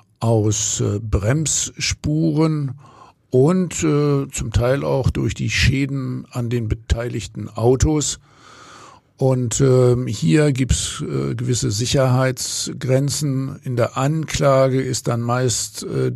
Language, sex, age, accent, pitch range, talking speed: German, male, 60-79, German, 110-130 Hz, 110 wpm